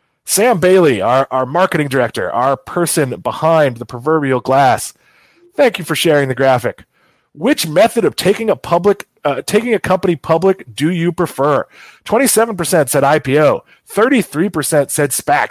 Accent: American